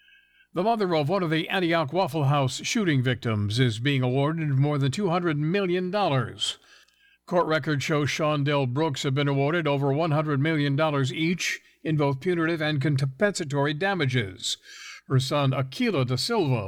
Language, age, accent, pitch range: English, 60-79, American, 130-160 Hz